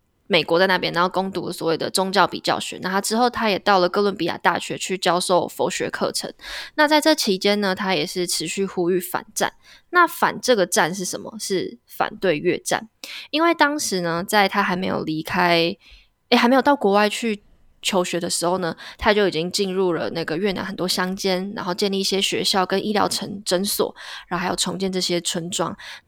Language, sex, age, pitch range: Chinese, female, 20-39, 180-215 Hz